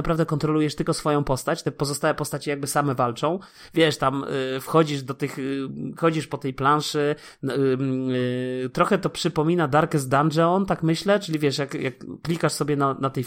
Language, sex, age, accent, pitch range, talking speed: Polish, male, 30-49, native, 135-165 Hz, 165 wpm